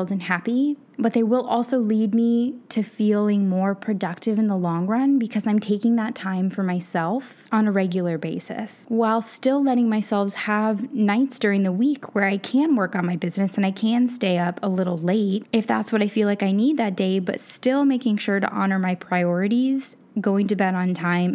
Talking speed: 210 wpm